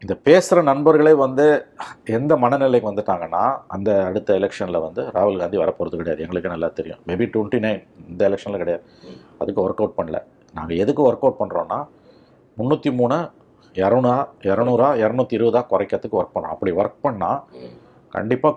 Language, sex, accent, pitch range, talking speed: Tamil, male, native, 110-140 Hz, 145 wpm